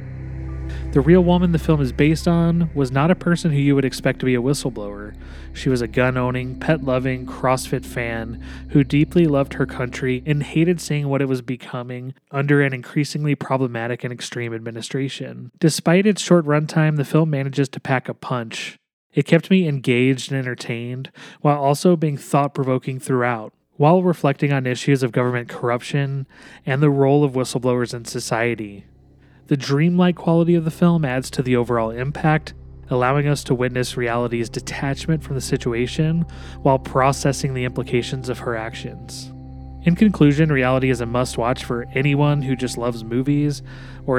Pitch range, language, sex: 125-145 Hz, English, male